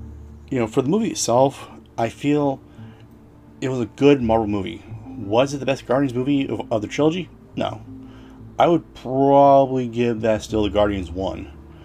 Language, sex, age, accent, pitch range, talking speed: English, male, 30-49, American, 100-115 Hz, 165 wpm